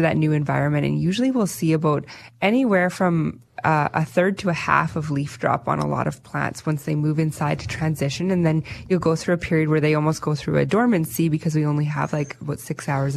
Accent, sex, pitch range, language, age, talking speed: American, female, 145-170 Hz, English, 20-39, 235 wpm